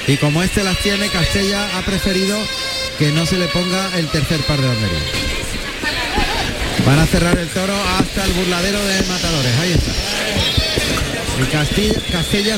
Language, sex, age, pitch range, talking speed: Spanish, male, 40-59, 155-200 Hz, 155 wpm